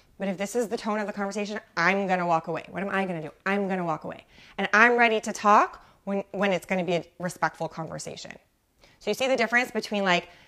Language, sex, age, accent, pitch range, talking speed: English, female, 20-39, American, 195-280 Hz, 265 wpm